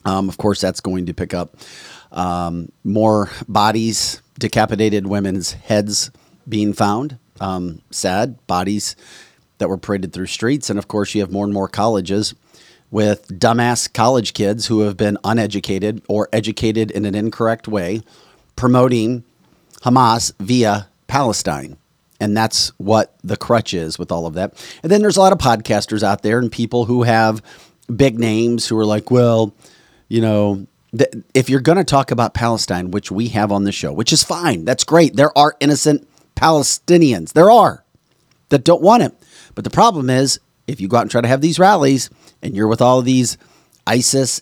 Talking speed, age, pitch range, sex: 175 wpm, 40-59, 100-130 Hz, male